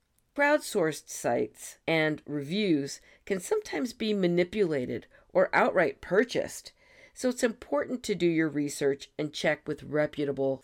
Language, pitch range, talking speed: English, 140-200 Hz, 125 wpm